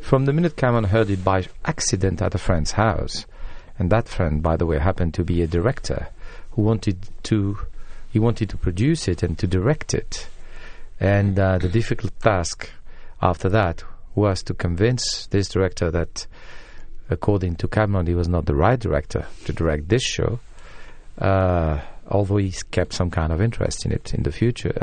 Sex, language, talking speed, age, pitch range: male, English, 180 wpm, 50-69, 90-110 Hz